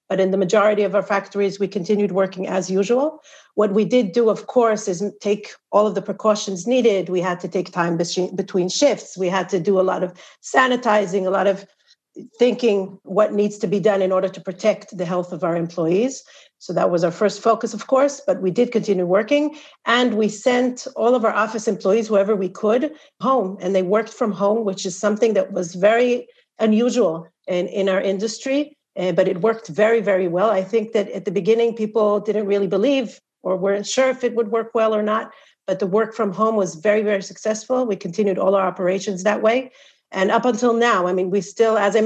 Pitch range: 195-225 Hz